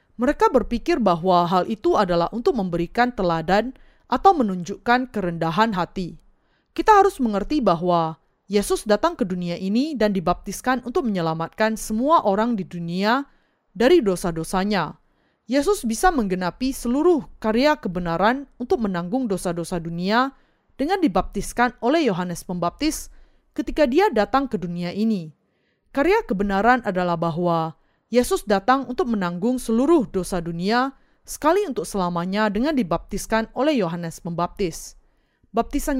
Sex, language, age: female, Indonesian, 30-49